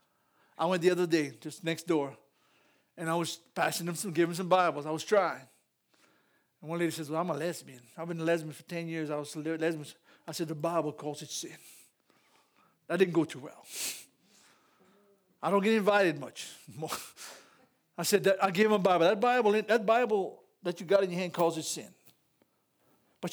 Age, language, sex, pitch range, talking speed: 60-79, English, male, 160-200 Hz, 205 wpm